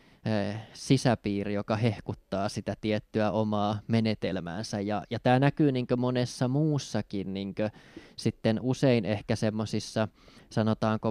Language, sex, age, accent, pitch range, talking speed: Finnish, male, 20-39, native, 105-115 Hz, 110 wpm